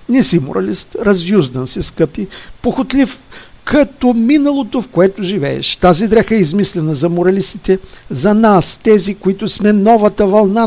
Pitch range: 155-210 Hz